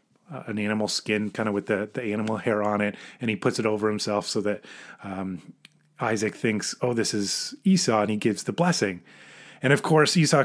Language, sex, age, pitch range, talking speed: English, male, 30-49, 115-170 Hz, 215 wpm